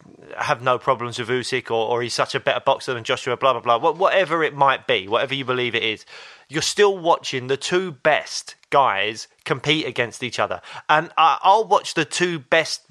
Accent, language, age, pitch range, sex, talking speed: British, English, 30-49, 125-160 Hz, male, 200 wpm